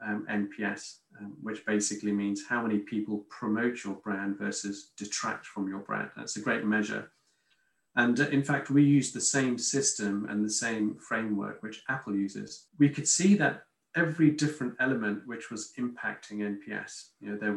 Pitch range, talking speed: 105-140 Hz, 175 wpm